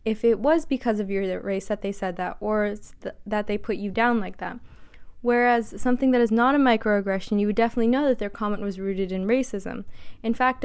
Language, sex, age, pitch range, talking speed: English, female, 20-39, 205-245 Hz, 220 wpm